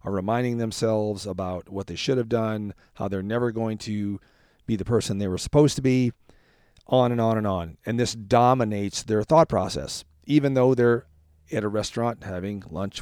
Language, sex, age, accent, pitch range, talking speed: English, male, 40-59, American, 100-120 Hz, 190 wpm